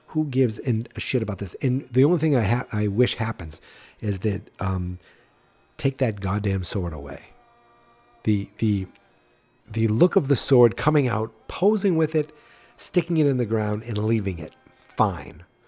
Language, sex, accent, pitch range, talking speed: English, male, American, 100-125 Hz, 170 wpm